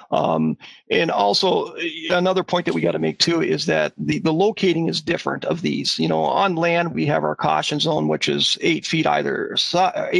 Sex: male